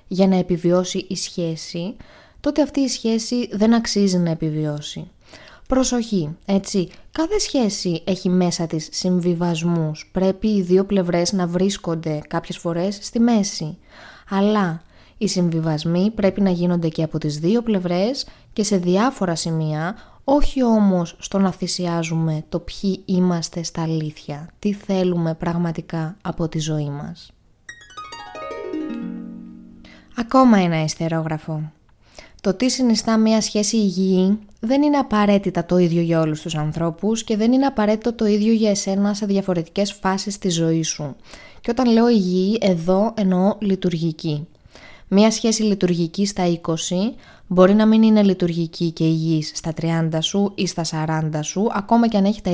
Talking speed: 145 wpm